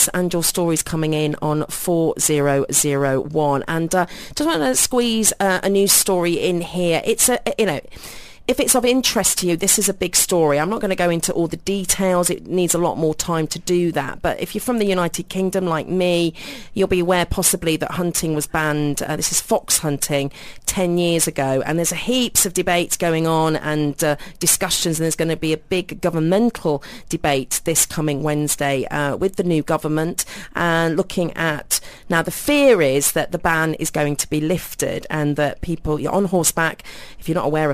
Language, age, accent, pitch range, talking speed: English, 40-59, British, 150-185 Hz, 210 wpm